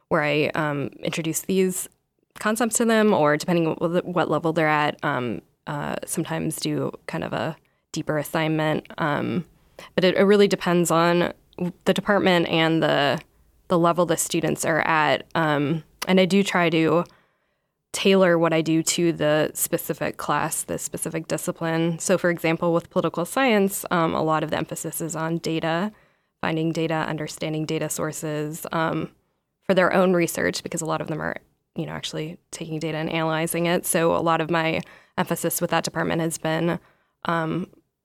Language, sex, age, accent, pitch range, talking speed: English, female, 10-29, American, 160-180 Hz, 170 wpm